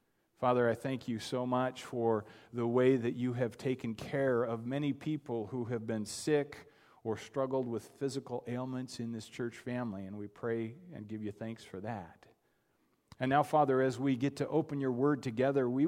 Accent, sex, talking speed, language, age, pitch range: American, male, 195 wpm, English, 40-59, 120-150 Hz